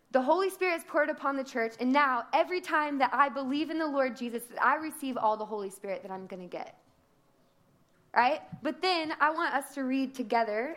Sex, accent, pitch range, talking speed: female, American, 195-255 Hz, 225 wpm